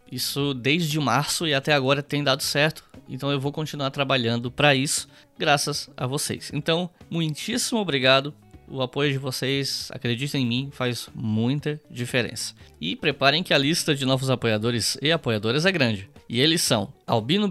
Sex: male